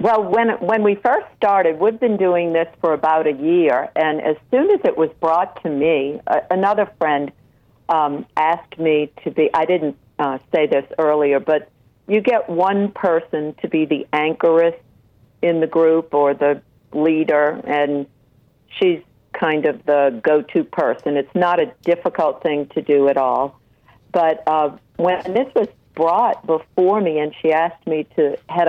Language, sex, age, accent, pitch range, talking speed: English, female, 50-69, American, 145-180 Hz, 170 wpm